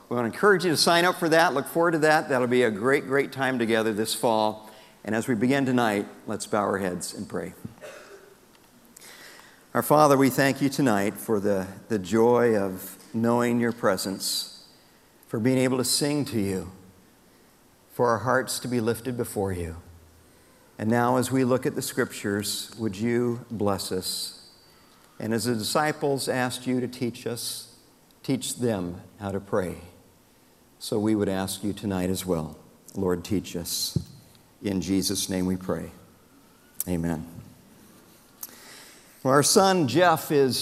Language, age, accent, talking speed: English, 50-69, American, 160 wpm